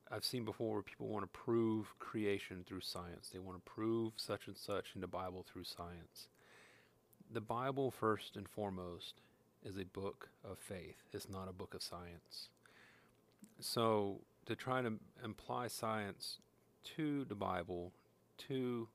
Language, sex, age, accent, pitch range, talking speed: English, male, 40-59, American, 95-115 Hz, 160 wpm